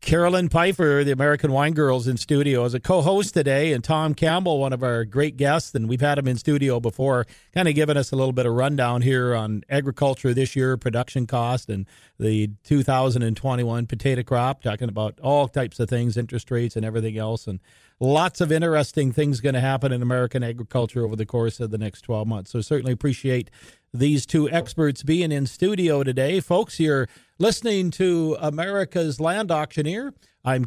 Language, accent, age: English, American, 40-59